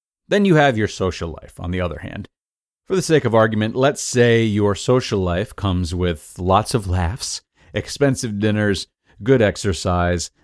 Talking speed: 165 wpm